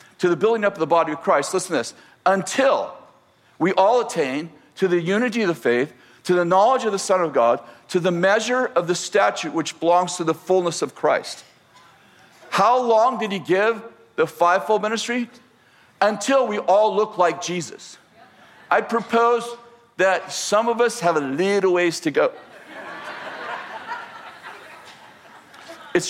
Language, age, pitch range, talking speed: English, 50-69, 175-230 Hz, 160 wpm